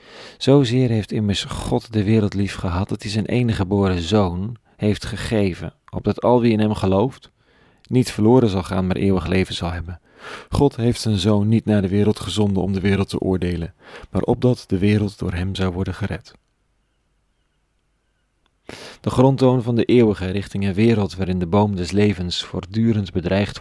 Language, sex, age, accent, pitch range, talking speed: Dutch, male, 40-59, Dutch, 95-110 Hz, 175 wpm